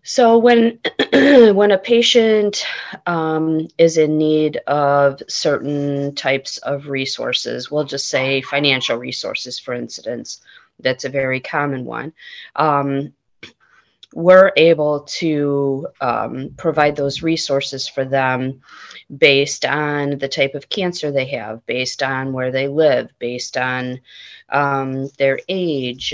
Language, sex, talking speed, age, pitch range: English, female, 125 wpm, 30-49, 135-150 Hz